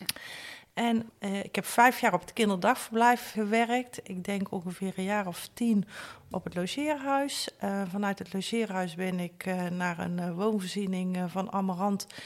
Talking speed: 160 wpm